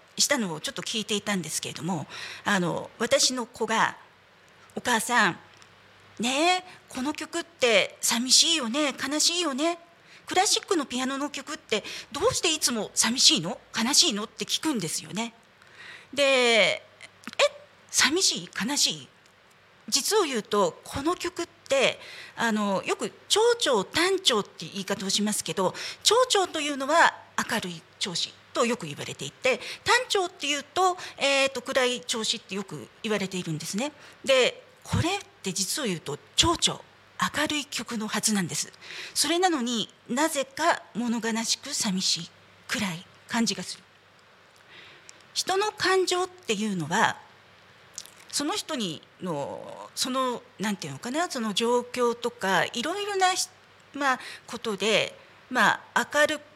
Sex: female